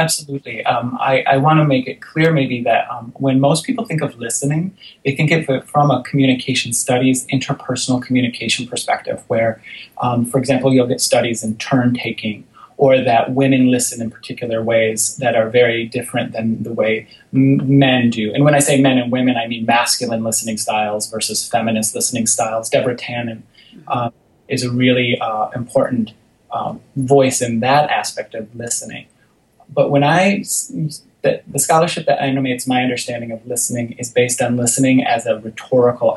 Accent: American